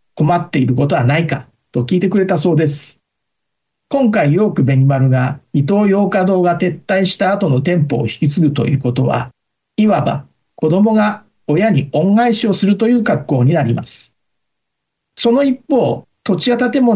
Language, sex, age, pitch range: Japanese, male, 50-69, 135-200 Hz